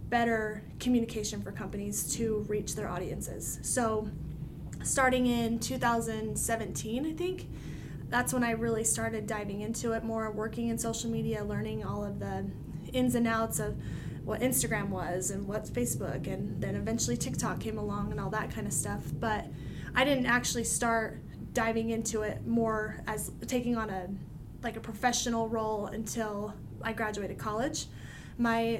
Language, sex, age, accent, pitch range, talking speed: English, female, 20-39, American, 215-235 Hz, 155 wpm